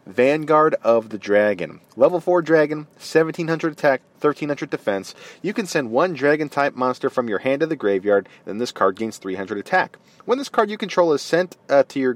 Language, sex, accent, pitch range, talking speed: English, male, American, 115-150 Hz, 190 wpm